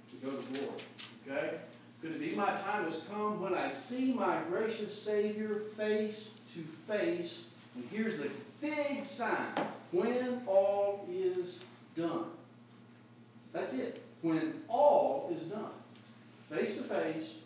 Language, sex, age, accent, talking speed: English, male, 40-59, American, 130 wpm